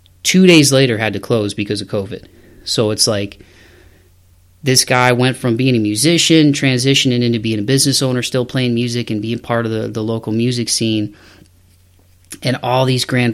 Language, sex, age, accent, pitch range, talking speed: English, male, 30-49, American, 105-120 Hz, 185 wpm